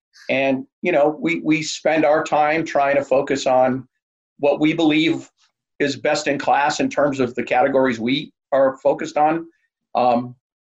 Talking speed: 165 wpm